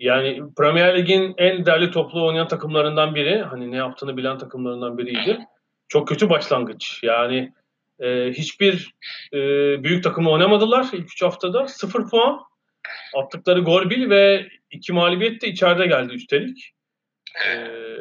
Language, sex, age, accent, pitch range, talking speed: Turkish, male, 40-59, native, 135-190 Hz, 135 wpm